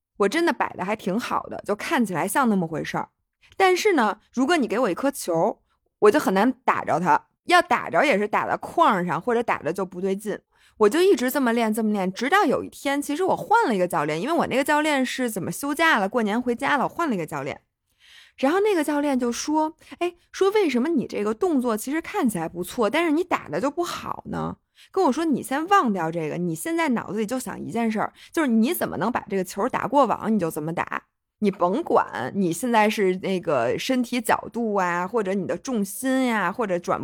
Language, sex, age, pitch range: Chinese, female, 20-39, 195-295 Hz